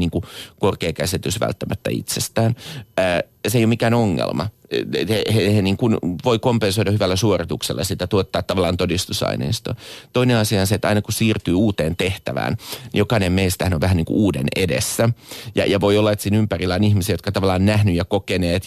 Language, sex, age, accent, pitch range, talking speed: Finnish, male, 30-49, native, 90-105 Hz, 180 wpm